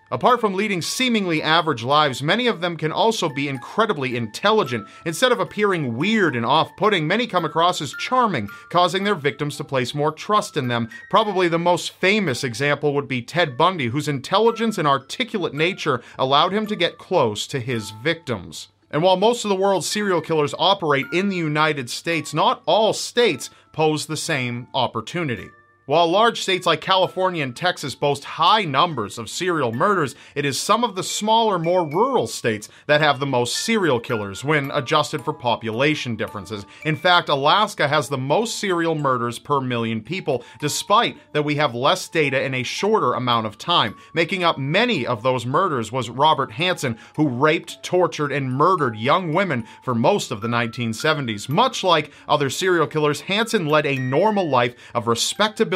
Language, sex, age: English, male, 40-59